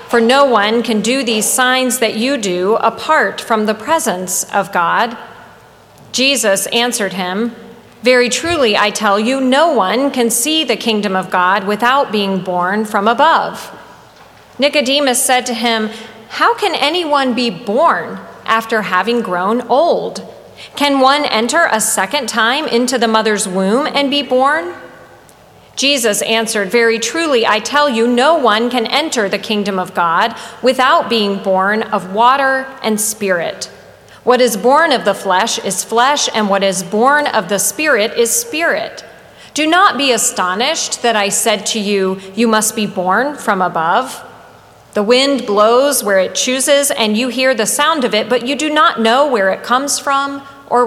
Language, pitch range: English, 210-265 Hz